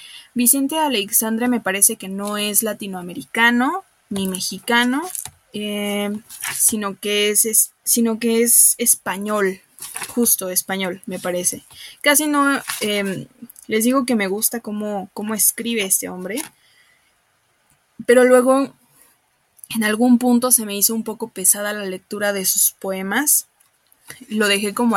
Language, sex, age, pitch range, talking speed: Spanish, female, 20-39, 195-235 Hz, 125 wpm